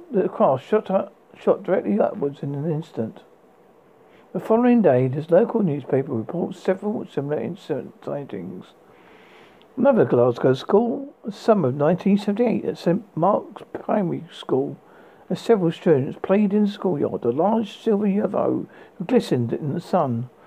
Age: 60-79